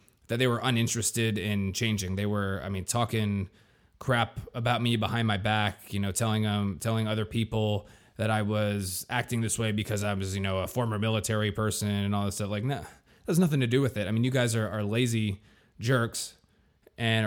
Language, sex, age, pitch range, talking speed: English, male, 20-39, 105-120 Hz, 210 wpm